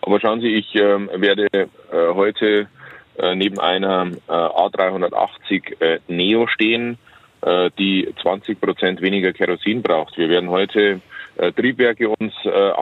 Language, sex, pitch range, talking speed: German, male, 95-115 Hz, 140 wpm